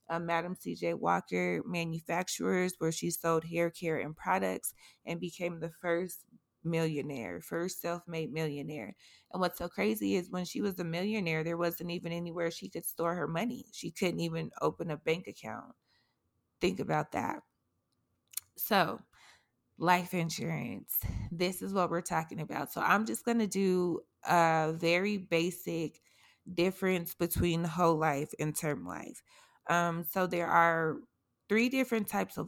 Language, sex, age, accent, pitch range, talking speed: English, female, 20-39, American, 160-180 Hz, 150 wpm